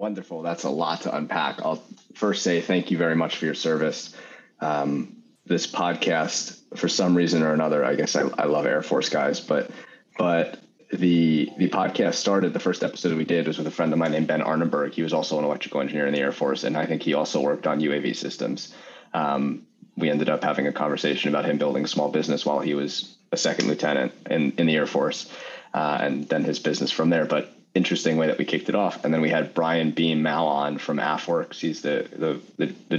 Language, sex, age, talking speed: English, male, 30-49, 225 wpm